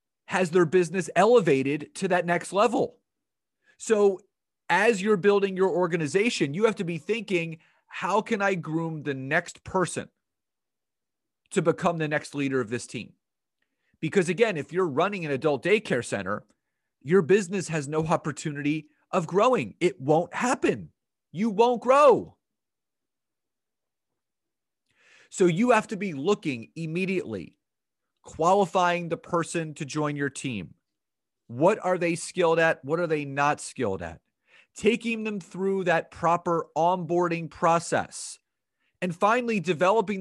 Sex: male